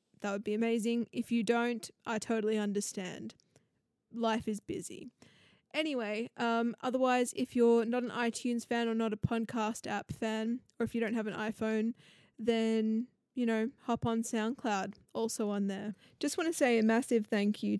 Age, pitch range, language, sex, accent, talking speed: 20-39, 210-250 Hz, English, female, Australian, 175 wpm